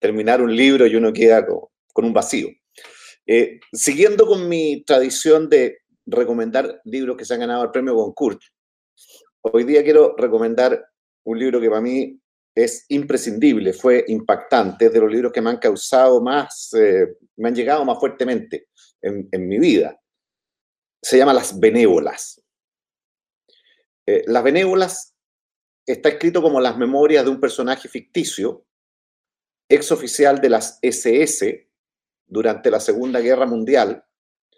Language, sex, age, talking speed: Spanish, male, 50-69, 140 wpm